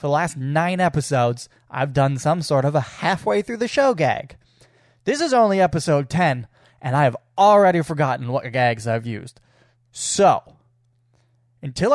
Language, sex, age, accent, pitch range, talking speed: English, male, 20-39, American, 130-180 Hz, 160 wpm